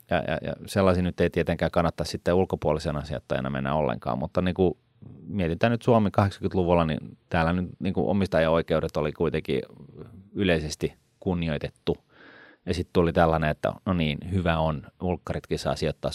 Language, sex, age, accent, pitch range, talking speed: Finnish, male, 30-49, native, 80-95 Hz, 150 wpm